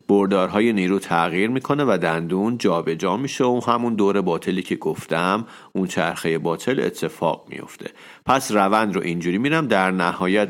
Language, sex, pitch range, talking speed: Persian, male, 90-120 Hz, 150 wpm